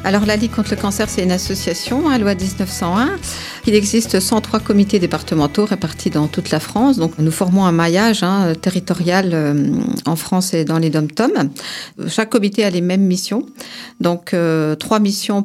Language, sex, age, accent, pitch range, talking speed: French, female, 50-69, French, 165-200 Hz, 185 wpm